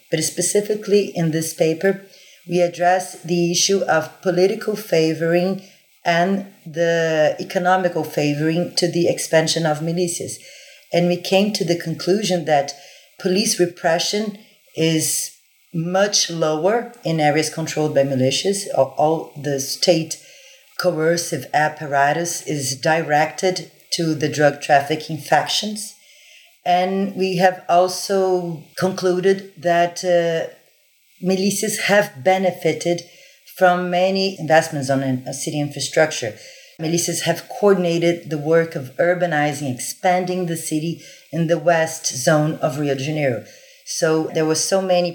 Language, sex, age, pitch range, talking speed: English, female, 40-59, 155-185 Hz, 120 wpm